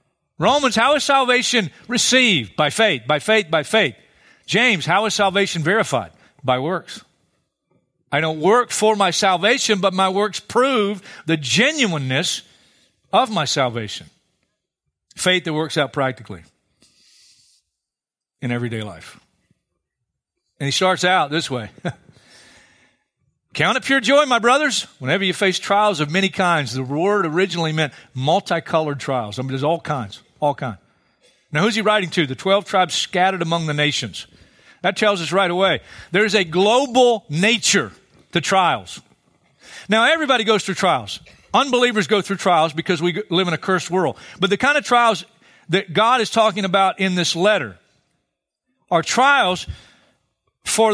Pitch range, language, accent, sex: 160-220 Hz, English, American, male